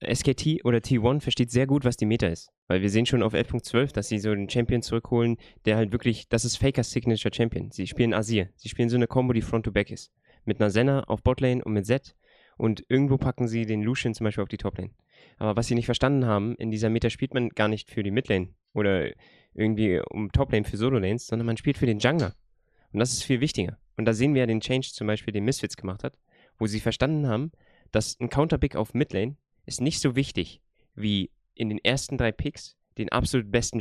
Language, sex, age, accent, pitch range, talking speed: German, male, 20-39, German, 105-130 Hz, 230 wpm